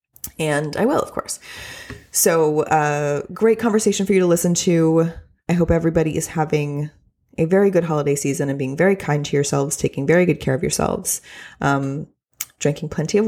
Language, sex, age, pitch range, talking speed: English, female, 20-39, 140-175 Hz, 180 wpm